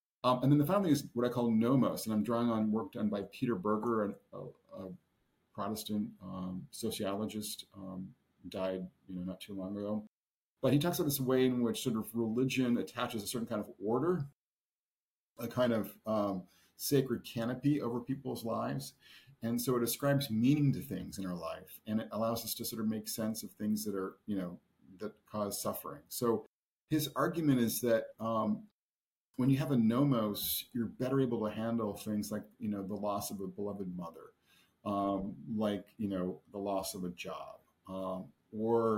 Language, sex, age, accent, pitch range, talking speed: English, male, 50-69, American, 100-120 Hz, 190 wpm